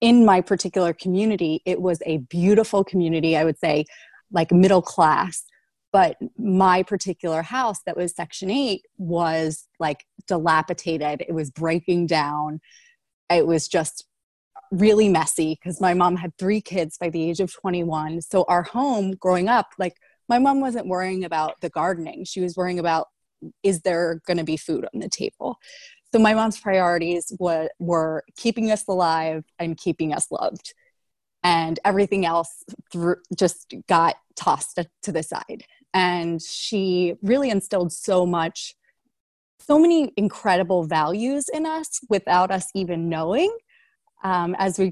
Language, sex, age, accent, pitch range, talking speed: English, female, 20-39, American, 165-205 Hz, 150 wpm